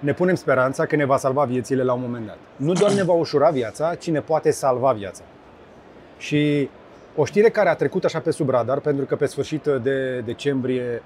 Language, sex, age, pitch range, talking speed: Romanian, male, 30-49, 130-160 Hz, 210 wpm